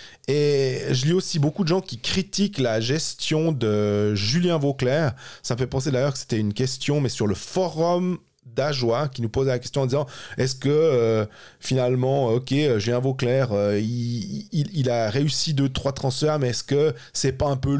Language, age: French, 30-49